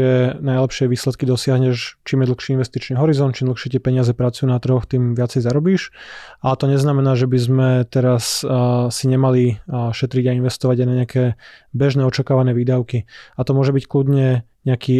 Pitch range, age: 125-135 Hz, 20-39